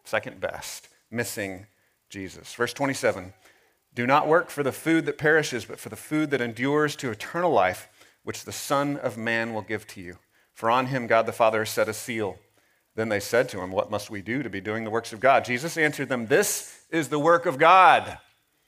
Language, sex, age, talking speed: English, male, 40-59, 215 wpm